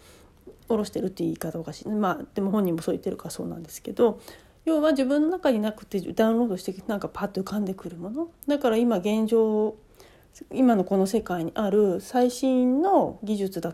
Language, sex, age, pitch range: Japanese, female, 40-59, 190-270 Hz